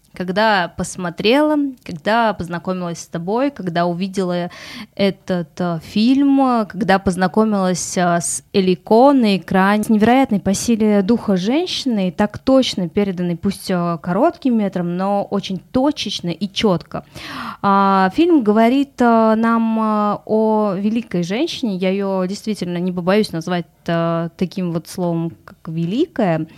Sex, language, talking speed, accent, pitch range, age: female, Russian, 110 wpm, native, 185-230 Hz, 20-39